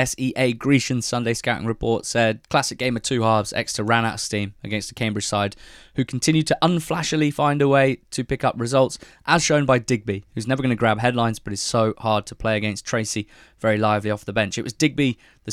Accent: British